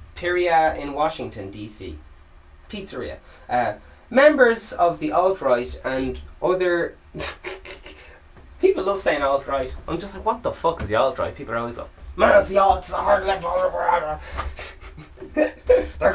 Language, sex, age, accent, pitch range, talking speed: English, male, 20-39, Irish, 115-190 Hz, 140 wpm